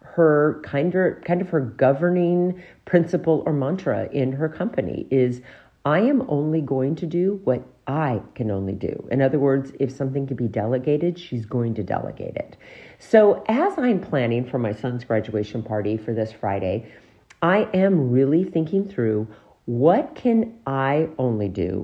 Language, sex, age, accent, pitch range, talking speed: English, female, 50-69, American, 115-165 Hz, 160 wpm